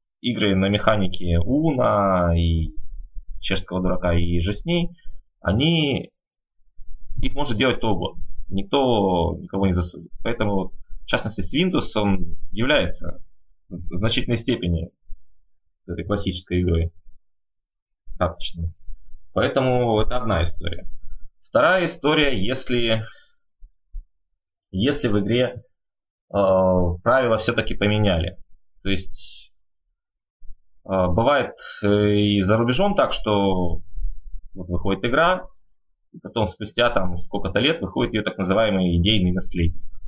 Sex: male